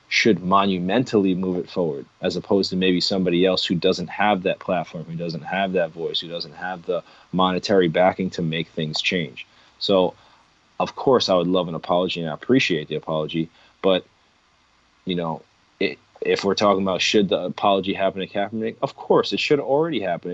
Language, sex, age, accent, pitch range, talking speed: English, male, 30-49, American, 90-110 Hz, 190 wpm